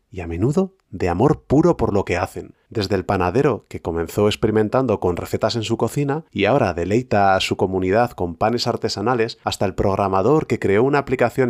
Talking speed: 195 wpm